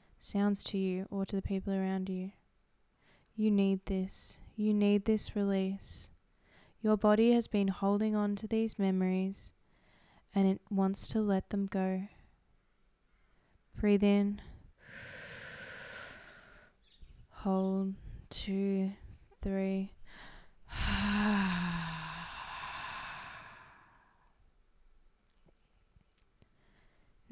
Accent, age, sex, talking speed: Australian, 20-39, female, 80 wpm